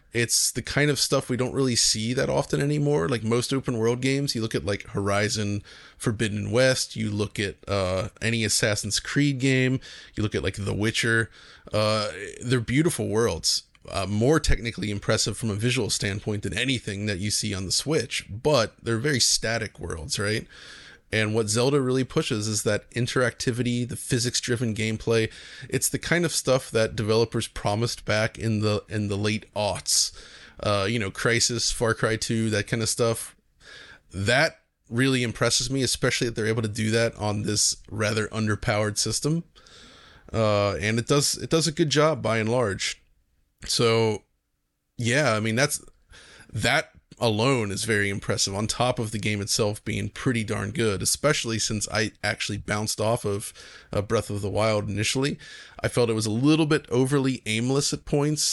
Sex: male